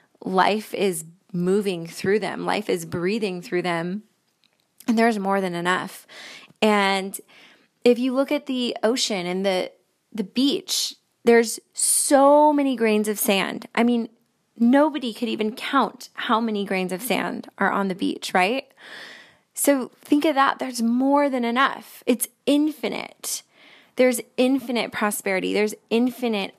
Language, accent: English, American